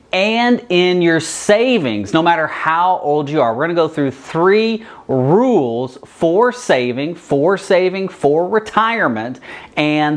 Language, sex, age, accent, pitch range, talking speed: English, male, 30-49, American, 135-190 Hz, 135 wpm